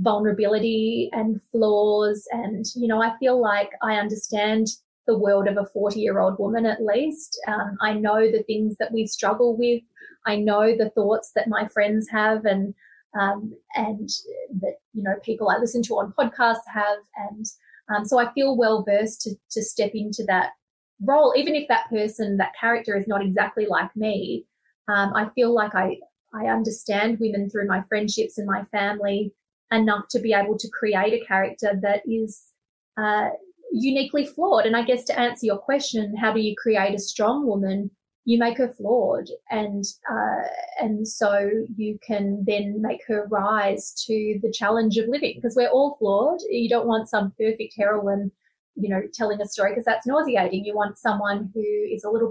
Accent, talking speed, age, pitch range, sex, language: Australian, 180 wpm, 20-39, 205-230 Hz, female, English